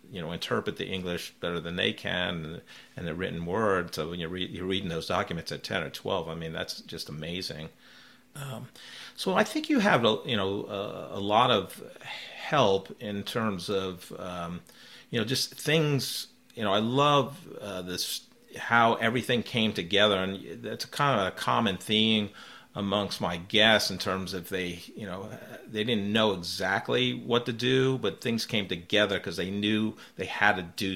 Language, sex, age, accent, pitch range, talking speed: English, male, 40-59, American, 85-110 Hz, 180 wpm